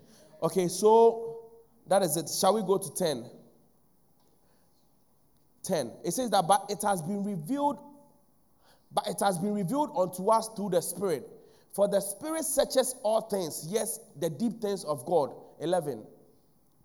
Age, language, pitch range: 30-49, English, 175-230 Hz